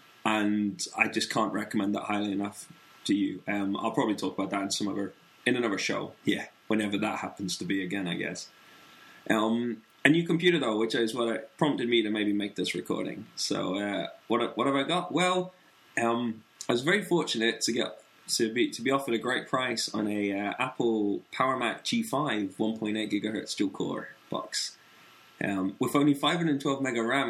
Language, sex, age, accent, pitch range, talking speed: English, male, 20-39, British, 100-135 Hz, 200 wpm